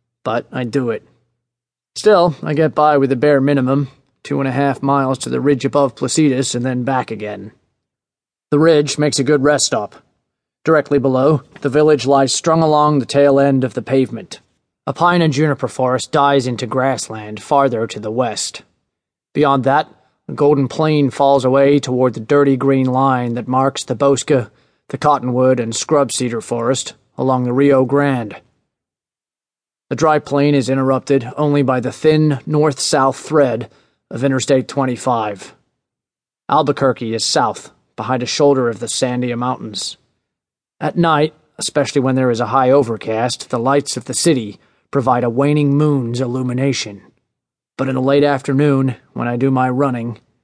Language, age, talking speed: English, 30-49, 165 wpm